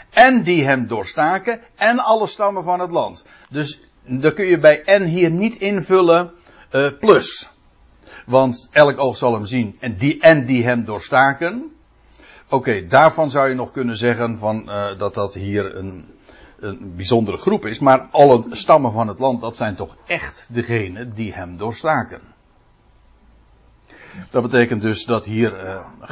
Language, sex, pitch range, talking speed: Dutch, male, 110-160 Hz, 155 wpm